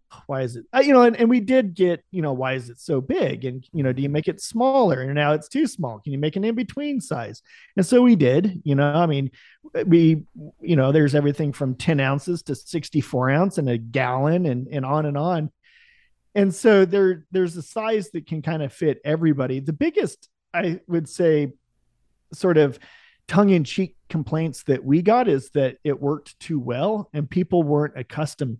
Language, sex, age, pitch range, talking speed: English, male, 40-59, 140-185 Hz, 205 wpm